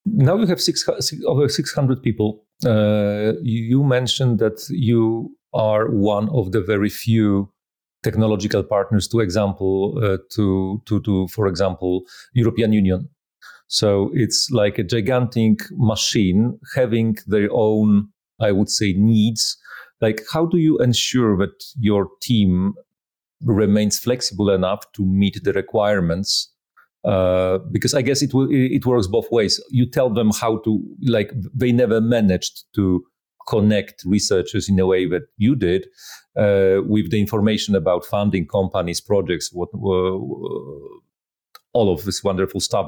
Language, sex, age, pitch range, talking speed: English, male, 40-59, 100-120 Hz, 140 wpm